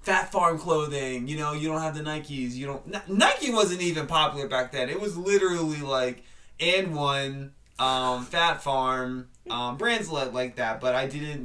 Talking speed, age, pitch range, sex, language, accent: 185 wpm, 20-39, 125-145 Hz, male, English, American